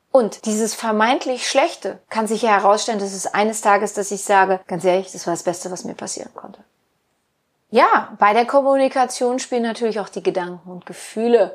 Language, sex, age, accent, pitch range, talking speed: German, female, 30-49, German, 190-245 Hz, 185 wpm